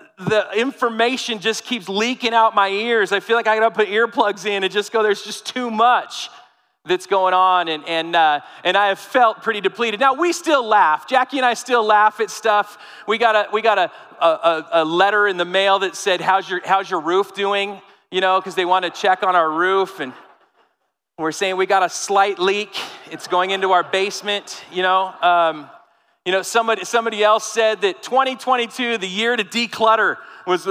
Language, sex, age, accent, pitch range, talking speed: English, male, 40-59, American, 185-235 Hz, 205 wpm